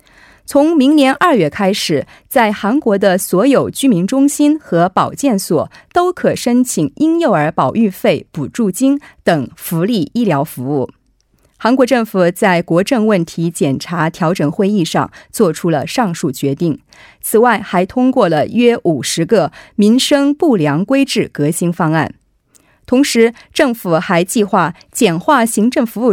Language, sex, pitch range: Korean, female, 175-270 Hz